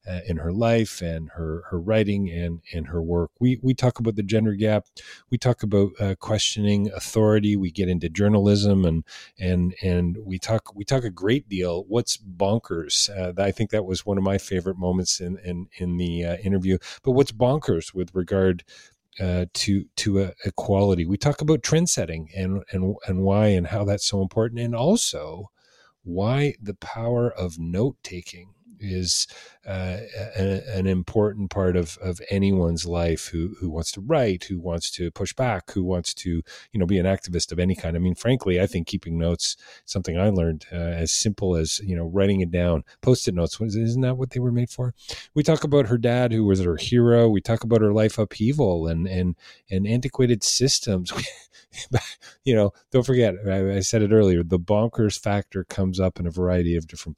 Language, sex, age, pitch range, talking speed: English, male, 40-59, 90-110 Hz, 195 wpm